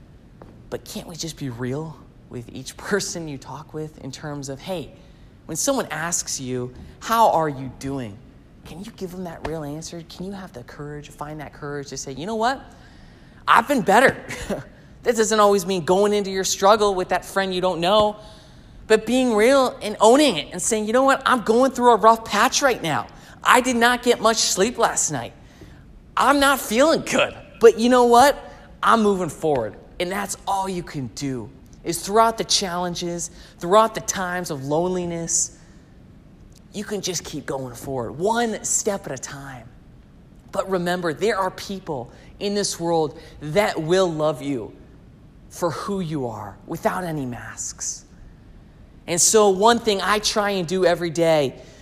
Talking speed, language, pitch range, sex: 180 wpm, English, 150-210 Hz, male